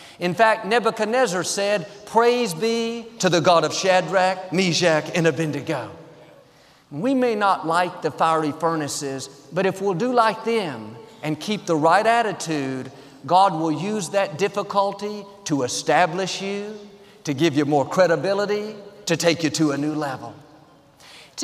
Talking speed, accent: 150 wpm, American